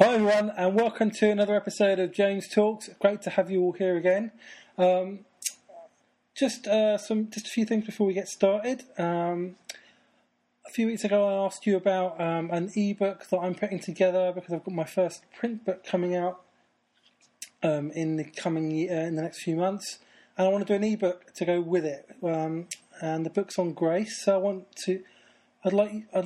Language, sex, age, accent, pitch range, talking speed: English, male, 20-39, British, 175-205 Hz, 195 wpm